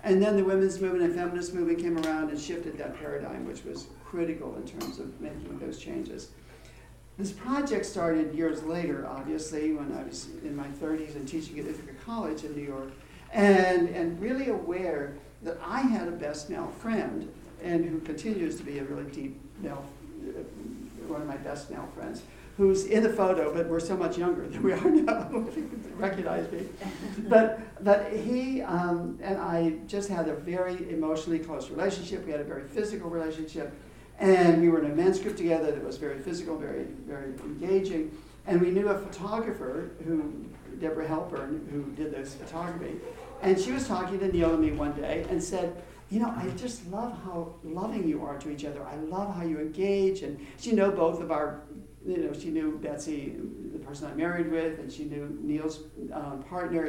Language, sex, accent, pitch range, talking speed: English, male, American, 155-195 Hz, 190 wpm